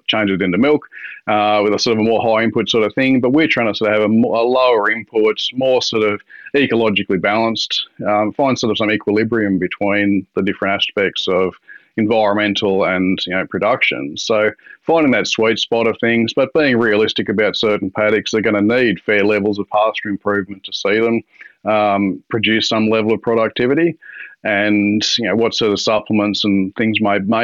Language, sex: English, male